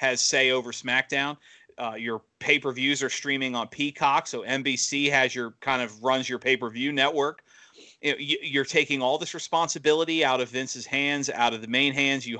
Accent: American